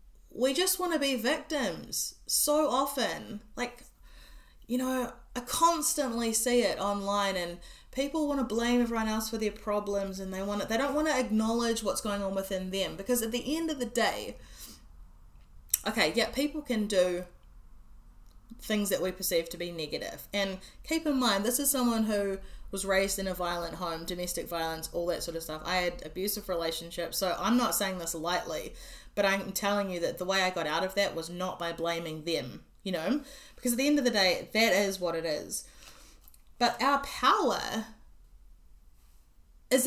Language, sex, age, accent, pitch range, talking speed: English, female, 20-39, Australian, 175-245 Hz, 190 wpm